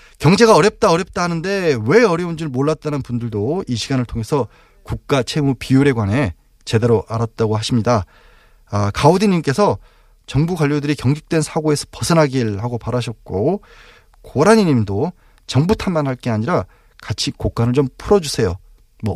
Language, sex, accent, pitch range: Korean, male, native, 110-155 Hz